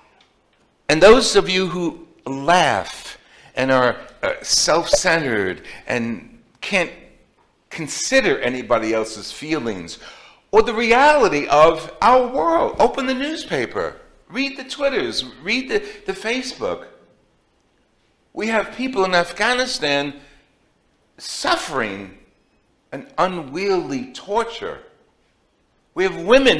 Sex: male